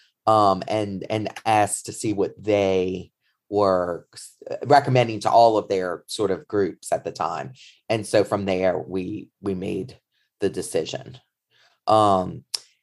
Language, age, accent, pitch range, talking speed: English, 30-49, American, 100-130 Hz, 140 wpm